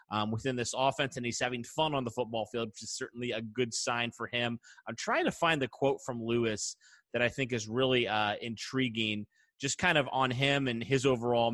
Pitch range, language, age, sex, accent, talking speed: 115-135 Hz, English, 30-49, male, American, 225 wpm